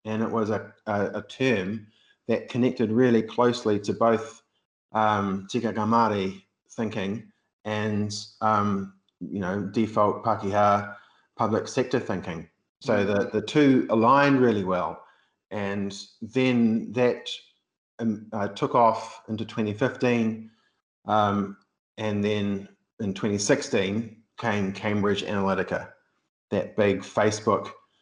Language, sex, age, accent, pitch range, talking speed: English, male, 30-49, Australian, 100-115 Hz, 110 wpm